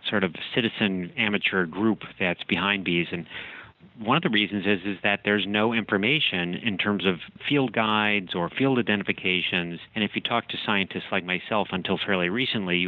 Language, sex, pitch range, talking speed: English, male, 90-110 Hz, 180 wpm